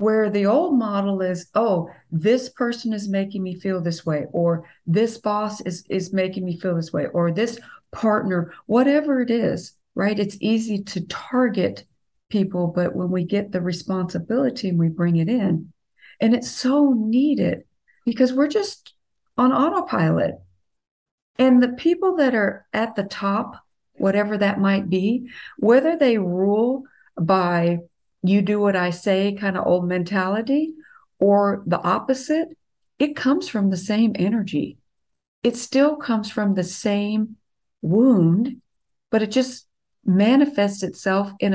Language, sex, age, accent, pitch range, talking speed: English, female, 50-69, American, 185-250 Hz, 145 wpm